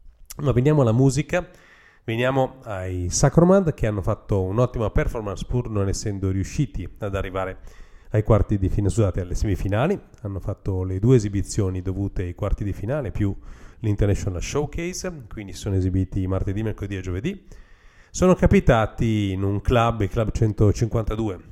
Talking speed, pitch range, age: 140 wpm, 95-115 Hz, 40-59